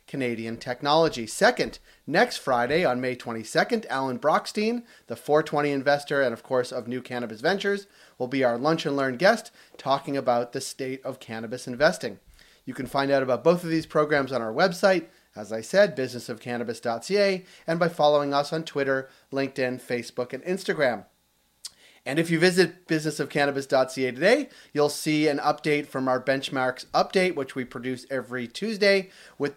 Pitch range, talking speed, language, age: 130-160 Hz, 160 wpm, English, 30-49